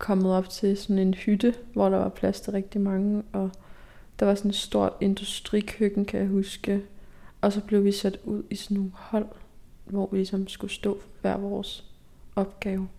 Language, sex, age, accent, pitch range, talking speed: Danish, female, 20-39, native, 190-205 Hz, 190 wpm